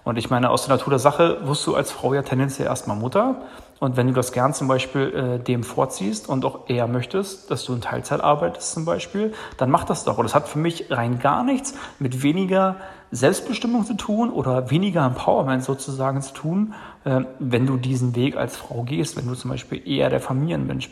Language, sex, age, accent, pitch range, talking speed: German, male, 40-59, German, 130-165 Hz, 215 wpm